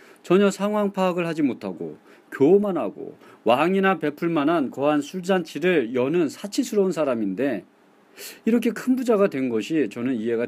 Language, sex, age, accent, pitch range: Korean, male, 40-59, native, 120-190 Hz